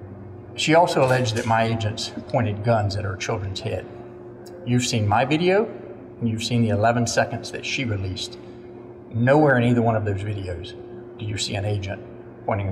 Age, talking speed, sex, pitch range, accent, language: 40-59, 180 wpm, male, 110-125 Hz, American, English